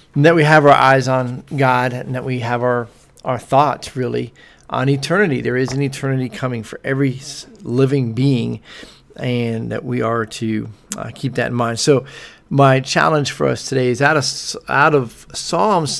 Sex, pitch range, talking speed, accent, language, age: male, 115-140 Hz, 185 wpm, American, English, 40-59